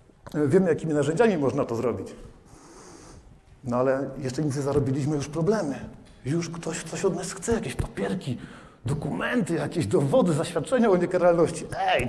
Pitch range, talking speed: 140-175 Hz, 145 wpm